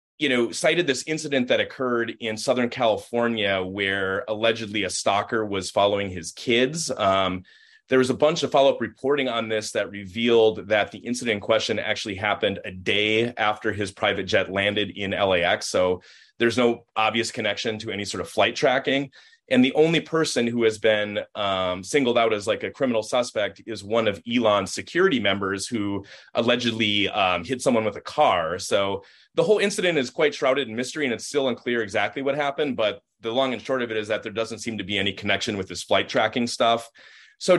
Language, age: English, 30-49